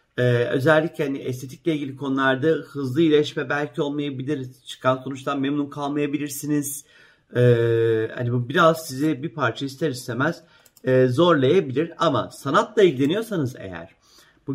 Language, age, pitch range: Turkish, 50-69, 125-150 Hz